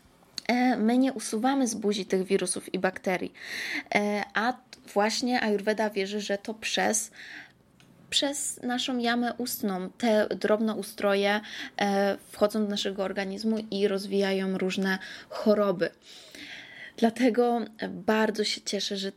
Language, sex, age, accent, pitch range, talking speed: Polish, female, 20-39, native, 200-230 Hz, 115 wpm